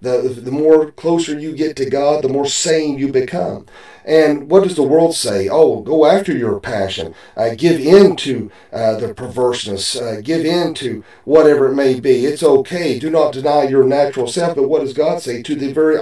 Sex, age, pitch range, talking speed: male, 40-59, 130-165 Hz, 205 wpm